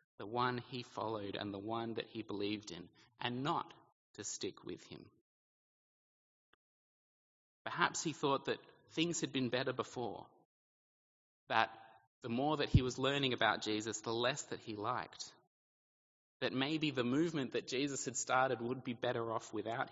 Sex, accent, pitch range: male, Australian, 105-140 Hz